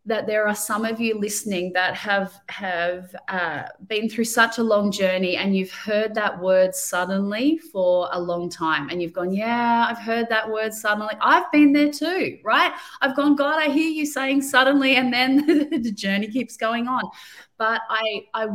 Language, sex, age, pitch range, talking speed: English, female, 30-49, 185-220 Hz, 190 wpm